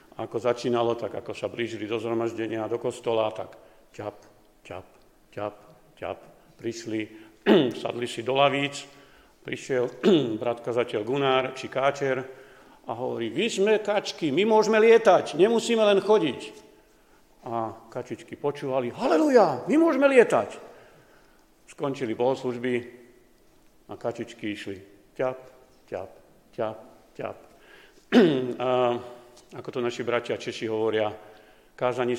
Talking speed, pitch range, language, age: 110 wpm, 110-130 Hz, Slovak, 50-69